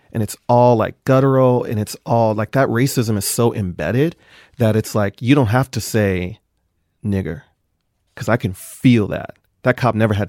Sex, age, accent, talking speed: male, 30-49, American, 185 wpm